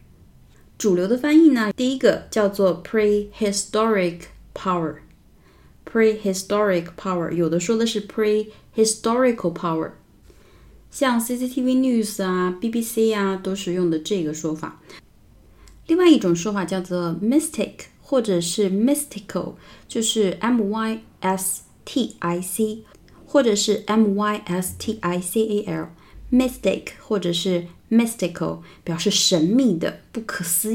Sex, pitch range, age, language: female, 170-220 Hz, 20-39, Chinese